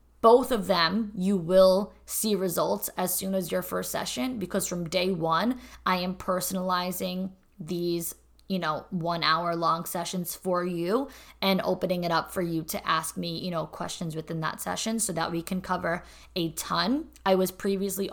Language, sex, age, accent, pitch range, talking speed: English, female, 20-39, American, 170-200 Hz, 180 wpm